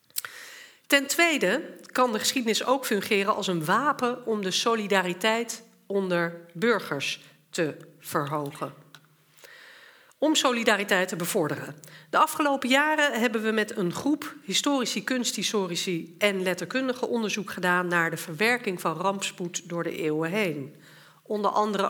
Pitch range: 180-250 Hz